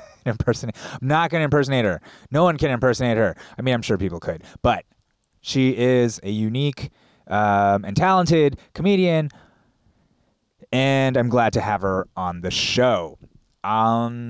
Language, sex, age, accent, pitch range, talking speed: English, male, 20-39, American, 110-150 Hz, 155 wpm